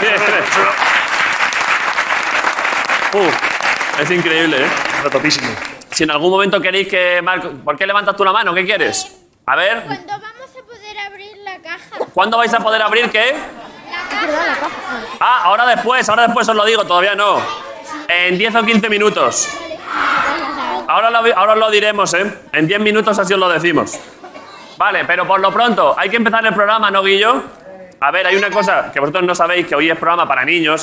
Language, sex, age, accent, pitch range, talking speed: Spanish, male, 30-49, Spanish, 175-230 Hz, 175 wpm